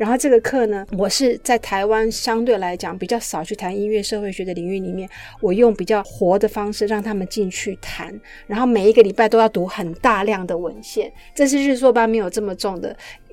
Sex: female